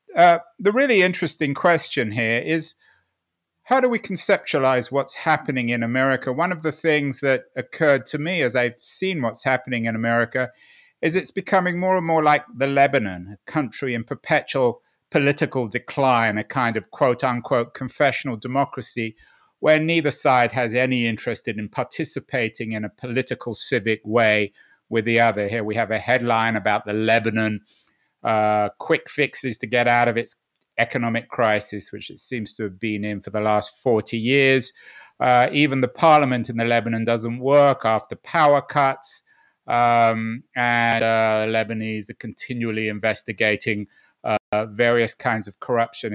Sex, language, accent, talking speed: male, English, British, 155 wpm